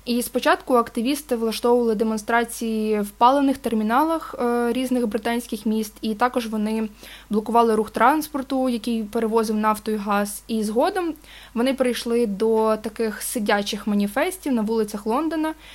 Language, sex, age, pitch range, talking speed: Ukrainian, female, 20-39, 215-255 Hz, 125 wpm